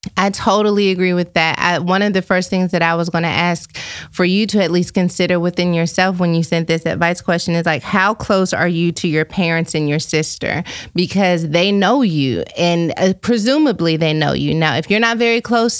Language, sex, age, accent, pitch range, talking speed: English, female, 30-49, American, 170-205 Hz, 220 wpm